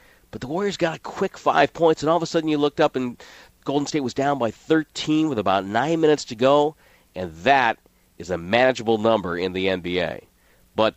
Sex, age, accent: male, 40-59, American